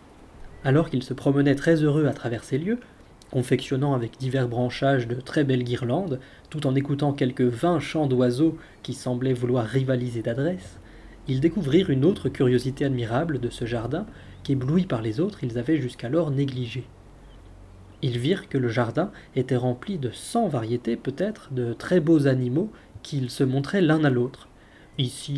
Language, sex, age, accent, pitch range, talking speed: French, male, 20-39, French, 125-150 Hz, 165 wpm